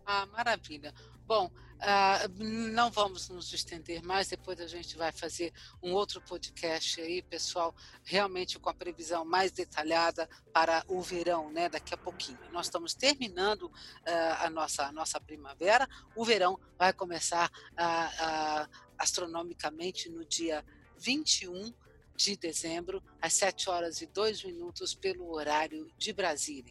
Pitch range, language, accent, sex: 170-210 Hz, Portuguese, Brazilian, female